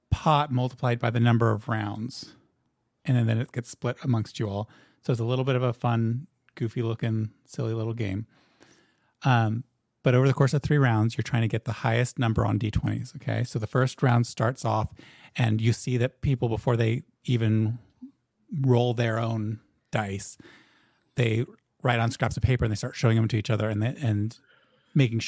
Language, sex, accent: English, male, American